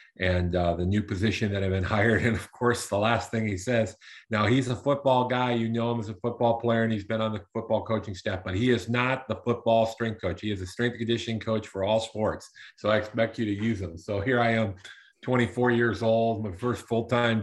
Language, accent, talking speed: English, American, 245 wpm